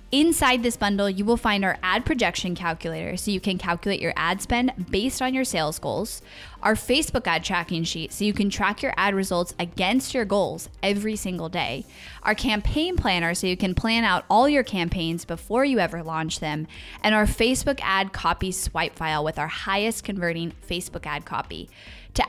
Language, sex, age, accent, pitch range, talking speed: English, female, 10-29, American, 165-210 Hz, 190 wpm